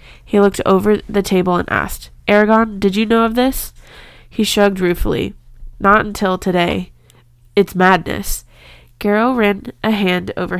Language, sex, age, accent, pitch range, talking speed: English, female, 20-39, American, 175-210 Hz, 145 wpm